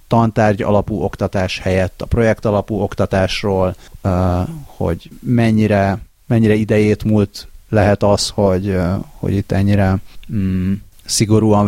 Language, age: Hungarian, 30-49